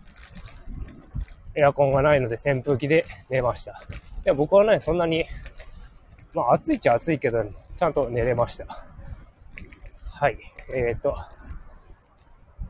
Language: Japanese